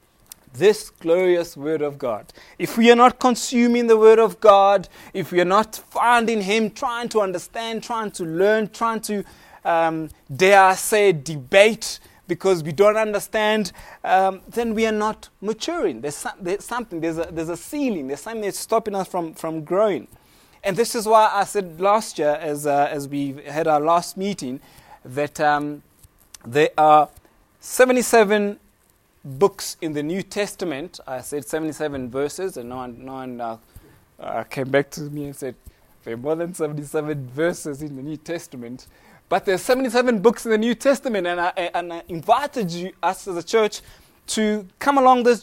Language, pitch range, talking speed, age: English, 160-220 Hz, 180 wpm, 30-49